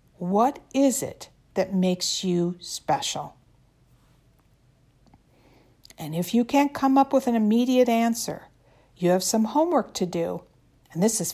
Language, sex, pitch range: English, female, 150-230 Hz